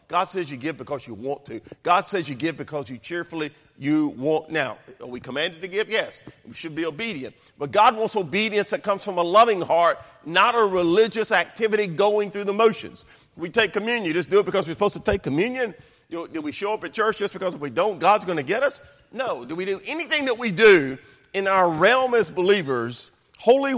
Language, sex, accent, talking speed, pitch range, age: English, male, American, 225 wpm, 145-215 Hz, 40-59